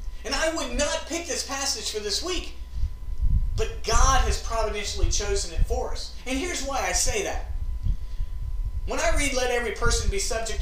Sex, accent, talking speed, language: male, American, 180 wpm, English